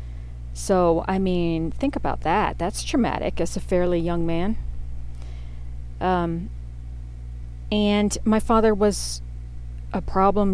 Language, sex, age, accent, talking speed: English, female, 40-59, American, 115 wpm